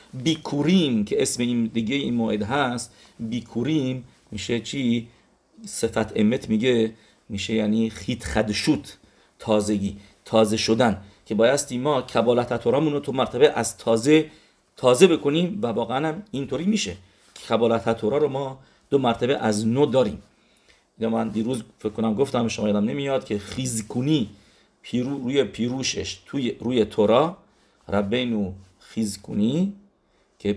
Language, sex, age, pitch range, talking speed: English, male, 50-69, 105-130 Hz, 130 wpm